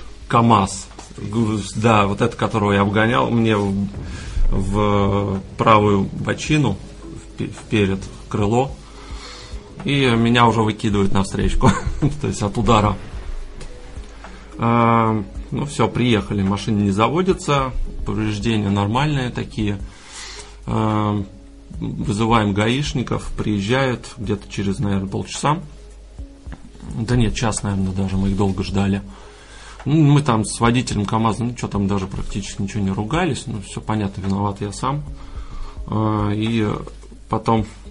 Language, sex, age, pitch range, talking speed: Russian, male, 30-49, 100-115 Hz, 115 wpm